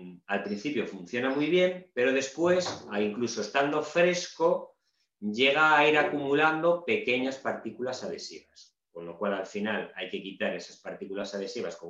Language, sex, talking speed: Spanish, male, 145 wpm